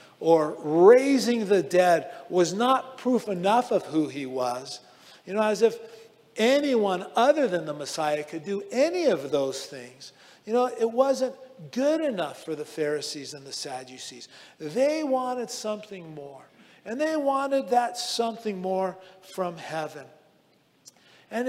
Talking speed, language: 145 wpm, English